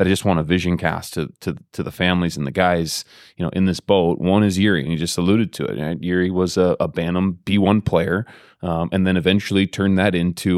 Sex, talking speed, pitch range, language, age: male, 245 wpm, 85-100 Hz, English, 30-49